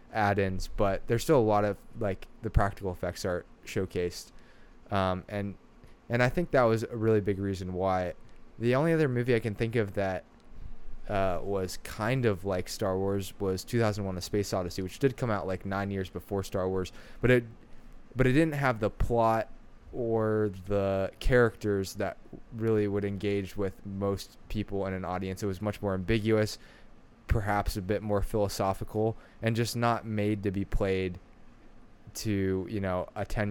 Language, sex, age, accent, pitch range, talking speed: English, male, 20-39, American, 95-110 Hz, 175 wpm